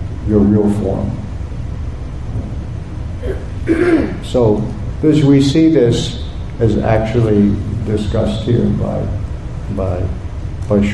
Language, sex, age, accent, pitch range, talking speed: English, male, 60-79, American, 105-125 Hz, 70 wpm